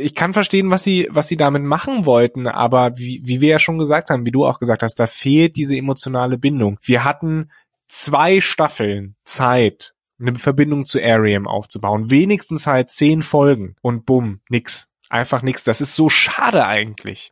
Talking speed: 180 wpm